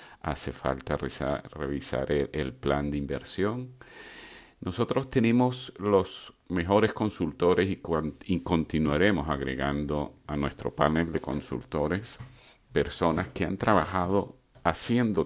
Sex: male